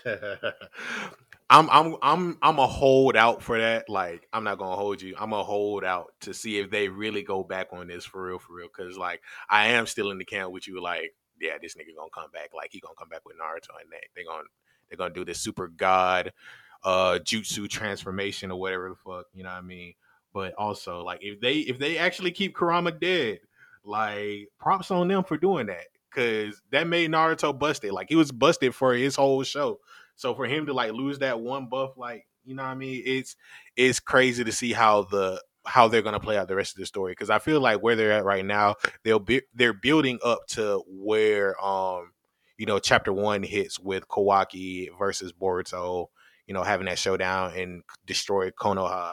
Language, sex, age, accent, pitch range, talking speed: English, male, 20-39, American, 95-135 Hz, 215 wpm